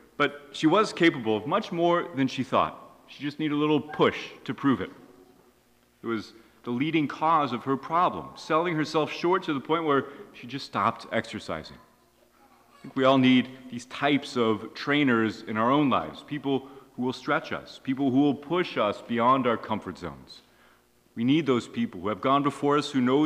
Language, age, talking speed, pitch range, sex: English, 30-49, 195 wpm, 115-150 Hz, male